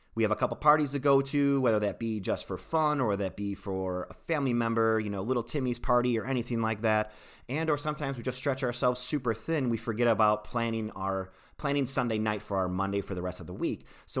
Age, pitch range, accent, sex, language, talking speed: 30-49, 100-130 Hz, American, male, English, 240 wpm